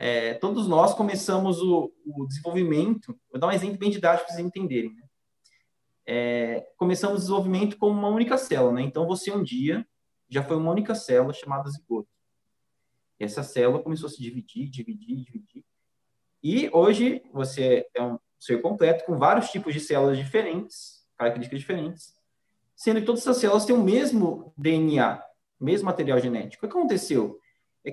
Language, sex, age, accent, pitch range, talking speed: Portuguese, male, 20-39, Brazilian, 145-210 Hz, 165 wpm